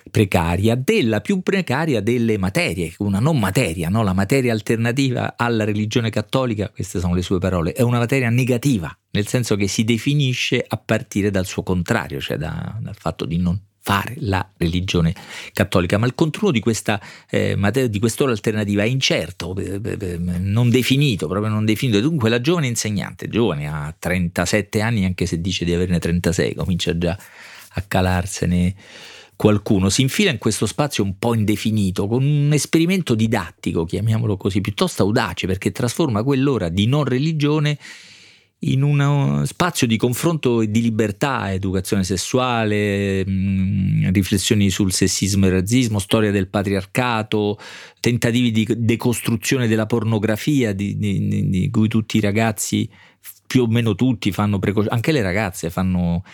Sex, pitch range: male, 95-120 Hz